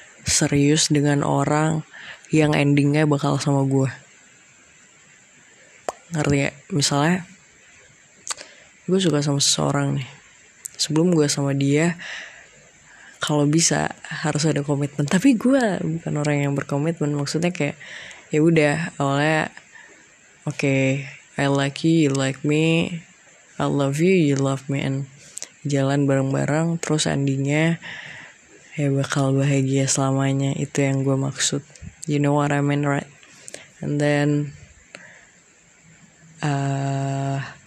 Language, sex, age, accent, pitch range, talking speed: Indonesian, female, 20-39, native, 140-160 Hz, 110 wpm